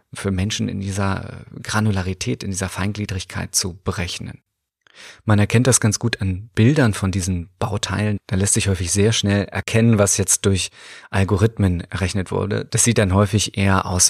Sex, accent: male, German